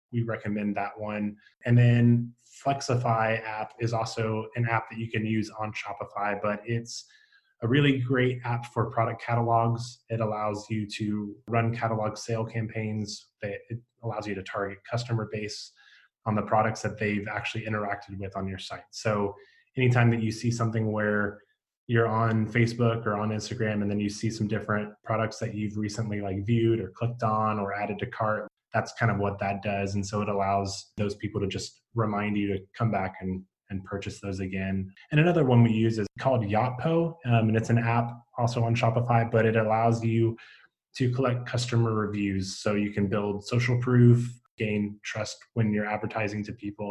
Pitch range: 105-115 Hz